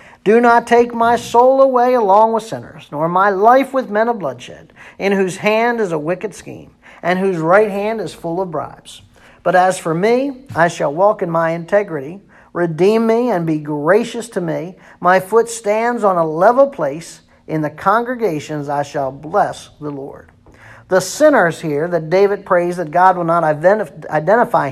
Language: English